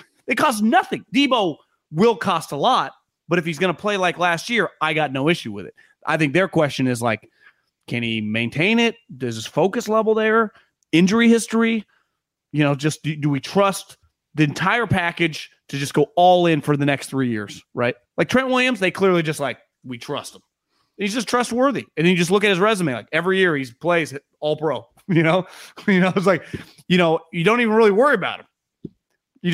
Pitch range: 150-215 Hz